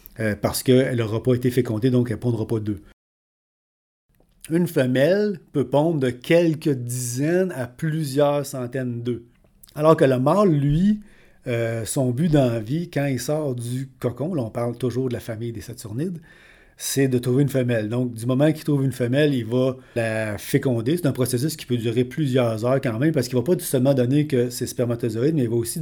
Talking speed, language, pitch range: 205 wpm, French, 120-145 Hz